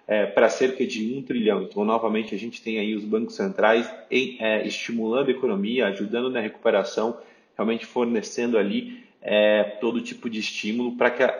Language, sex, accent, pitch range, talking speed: Portuguese, male, Brazilian, 105-120 Hz, 180 wpm